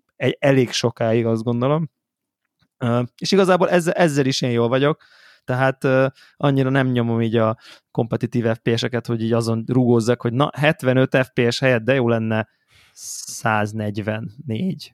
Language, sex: Hungarian, male